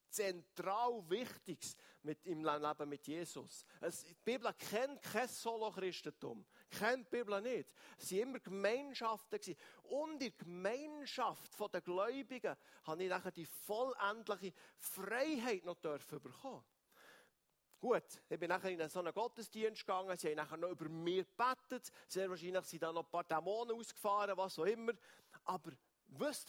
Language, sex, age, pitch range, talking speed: German, male, 50-69, 170-240 Hz, 150 wpm